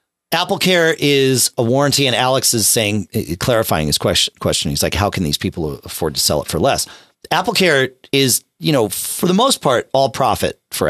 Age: 40-59